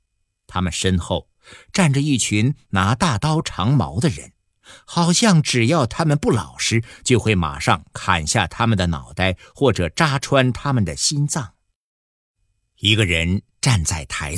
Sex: male